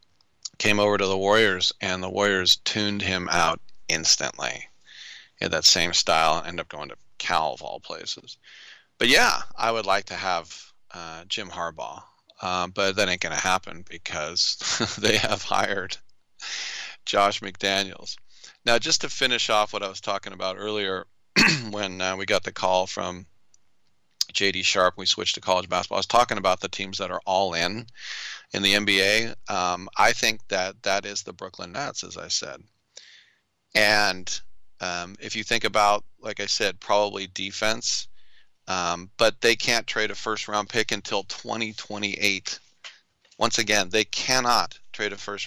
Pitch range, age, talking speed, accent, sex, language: 95-105 Hz, 40-59, 165 wpm, American, male, English